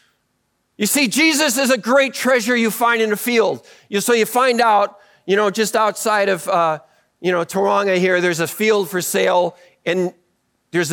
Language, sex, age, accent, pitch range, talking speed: English, male, 40-59, American, 185-235 Hz, 180 wpm